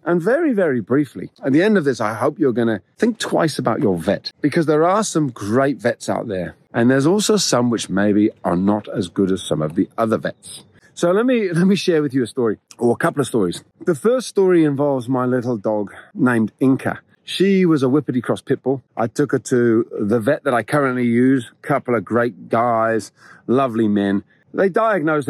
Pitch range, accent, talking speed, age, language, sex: 110-160 Hz, British, 220 wpm, 40-59, English, male